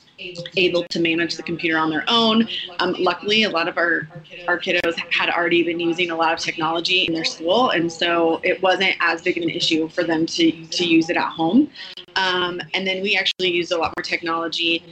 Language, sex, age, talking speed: English, female, 30-49, 215 wpm